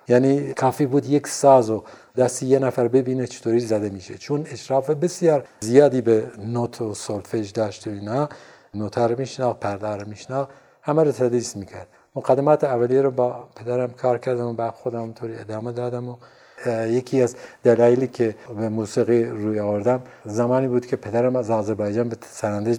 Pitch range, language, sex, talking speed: 115-135 Hz, Persian, male, 170 wpm